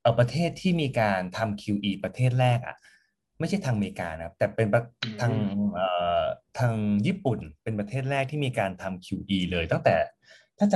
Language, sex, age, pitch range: Thai, male, 20-39, 100-135 Hz